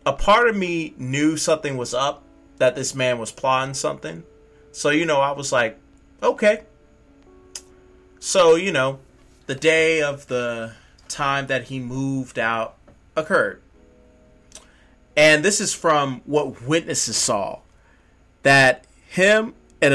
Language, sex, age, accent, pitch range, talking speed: English, male, 30-49, American, 115-150 Hz, 130 wpm